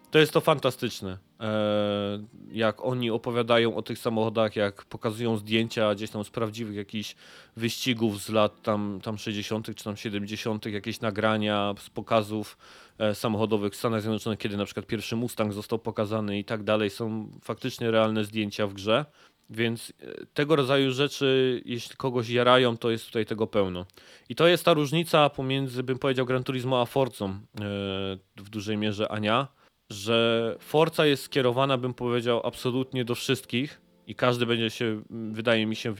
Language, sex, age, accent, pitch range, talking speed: Polish, male, 20-39, native, 105-125 Hz, 160 wpm